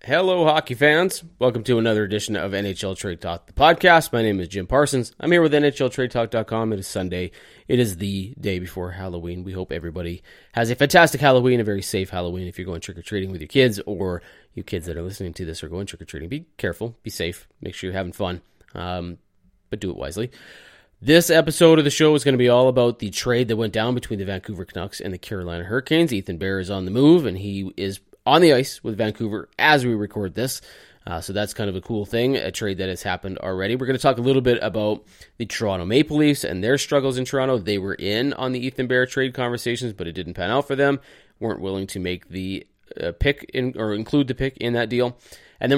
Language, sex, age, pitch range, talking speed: English, male, 30-49, 95-130 Hz, 240 wpm